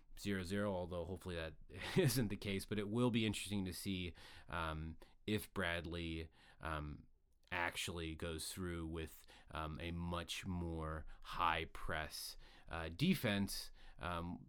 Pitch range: 80-100 Hz